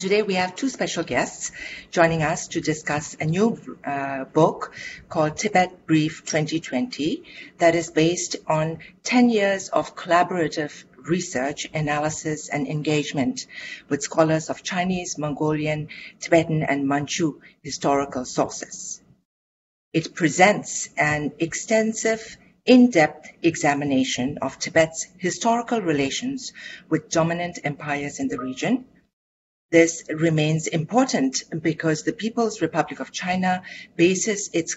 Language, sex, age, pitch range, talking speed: English, female, 50-69, 150-190 Hz, 115 wpm